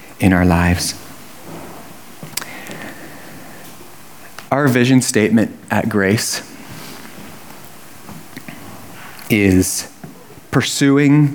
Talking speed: 55 wpm